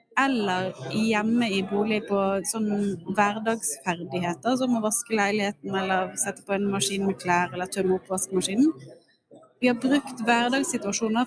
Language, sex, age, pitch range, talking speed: English, female, 30-49, 195-250 Hz, 145 wpm